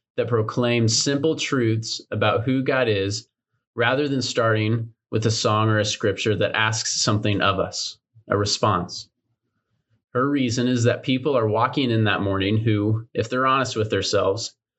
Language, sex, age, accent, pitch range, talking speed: English, male, 30-49, American, 105-125 Hz, 160 wpm